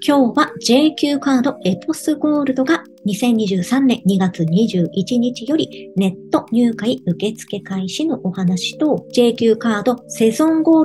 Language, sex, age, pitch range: Japanese, male, 40-59, 190-280 Hz